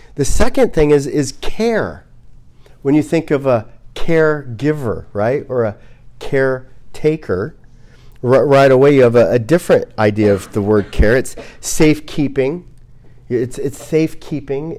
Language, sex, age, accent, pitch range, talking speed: English, male, 40-59, American, 125-165 Hz, 140 wpm